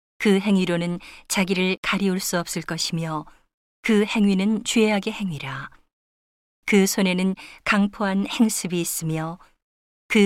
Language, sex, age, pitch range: Korean, female, 40-59, 170-205 Hz